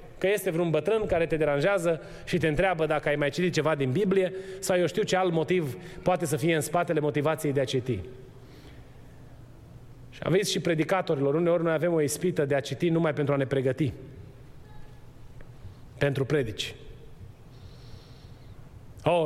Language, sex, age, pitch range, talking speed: Romanian, male, 30-49, 130-185 Hz, 160 wpm